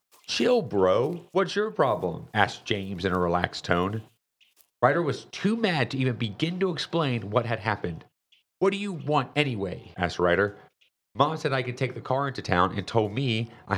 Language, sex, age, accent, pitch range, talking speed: English, male, 40-59, American, 100-145 Hz, 185 wpm